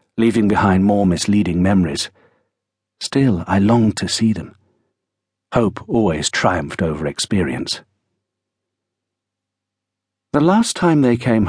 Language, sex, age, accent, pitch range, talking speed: English, male, 60-79, British, 90-120 Hz, 110 wpm